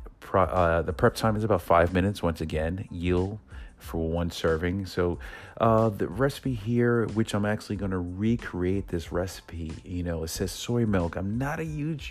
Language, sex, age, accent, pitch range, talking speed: English, male, 40-59, American, 85-110 Hz, 185 wpm